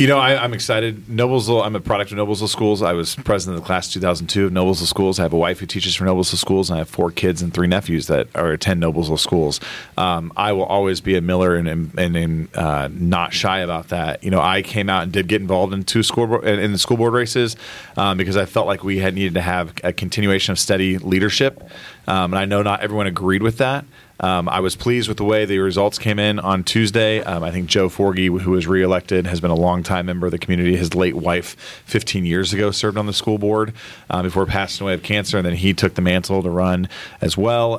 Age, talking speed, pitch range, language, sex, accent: 40-59, 250 wpm, 90-105 Hz, English, male, American